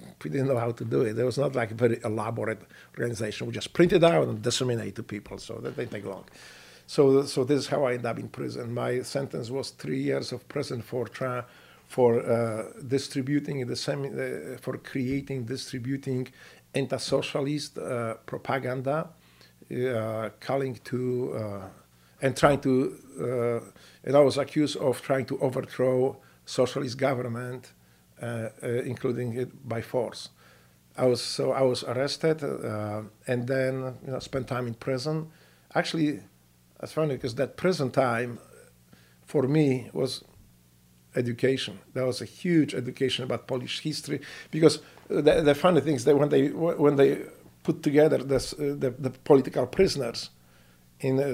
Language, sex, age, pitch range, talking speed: English, male, 50-69, 115-135 Hz, 160 wpm